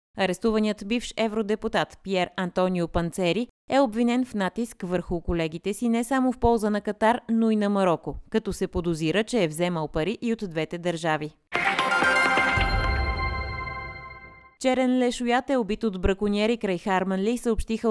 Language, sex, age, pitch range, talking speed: Bulgarian, female, 20-39, 165-220 Hz, 145 wpm